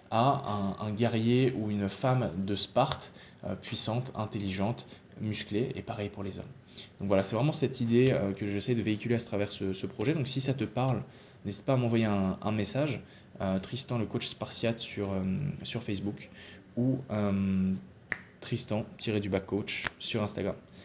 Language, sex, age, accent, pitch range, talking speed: French, male, 20-39, French, 100-120 Hz, 175 wpm